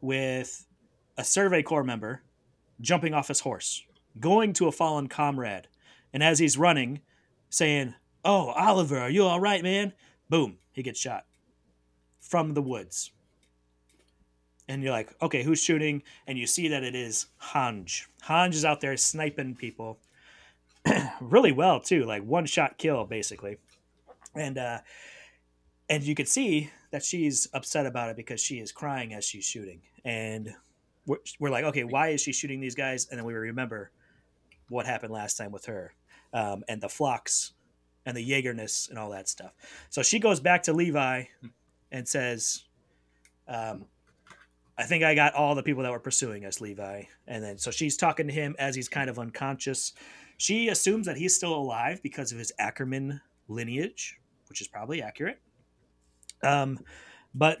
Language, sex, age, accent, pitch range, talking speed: English, male, 30-49, American, 110-155 Hz, 165 wpm